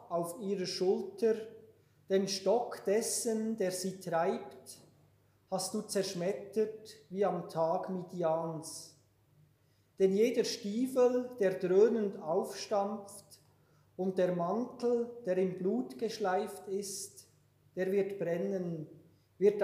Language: German